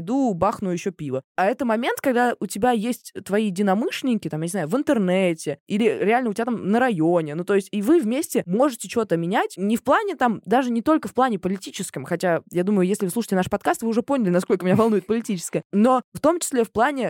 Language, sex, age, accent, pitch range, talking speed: Russian, female, 20-39, native, 185-250 Hz, 230 wpm